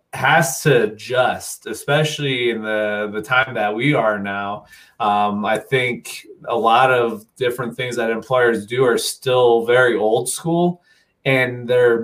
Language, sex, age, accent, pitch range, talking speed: English, male, 30-49, American, 115-135 Hz, 150 wpm